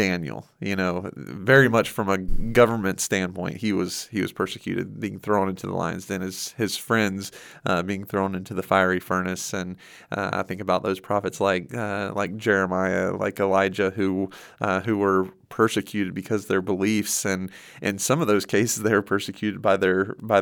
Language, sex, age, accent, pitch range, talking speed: English, male, 30-49, American, 95-110 Hz, 190 wpm